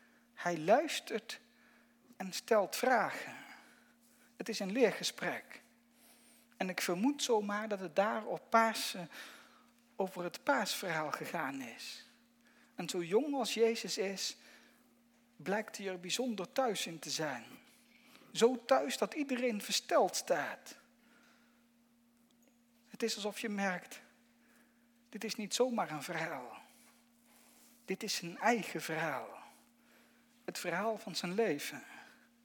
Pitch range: 210-245 Hz